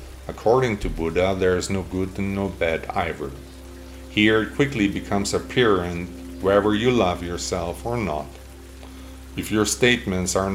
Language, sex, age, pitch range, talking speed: English, male, 50-69, 70-105 Hz, 150 wpm